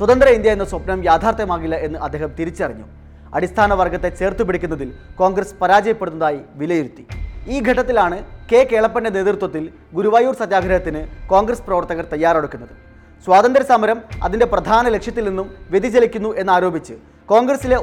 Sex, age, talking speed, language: male, 20-39, 115 wpm, Malayalam